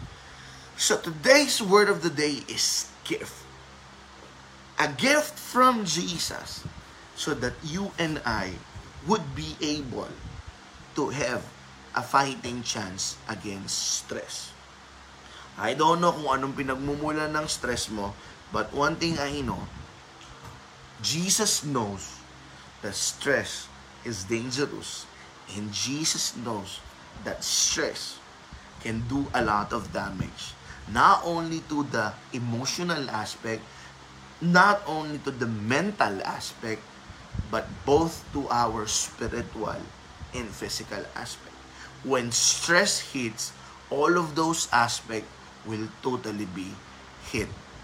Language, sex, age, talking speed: Filipino, male, 20-39, 110 wpm